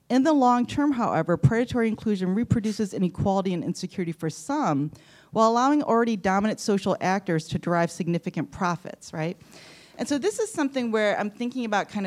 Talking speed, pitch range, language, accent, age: 170 wpm, 165-215 Hz, English, American, 30-49